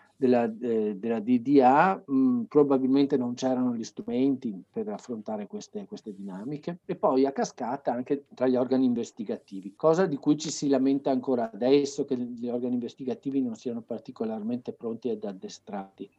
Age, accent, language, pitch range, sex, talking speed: 50-69, native, Italian, 120-150 Hz, male, 160 wpm